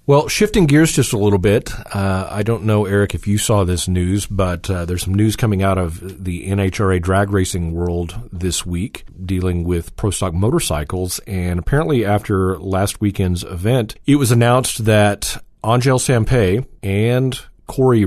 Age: 40-59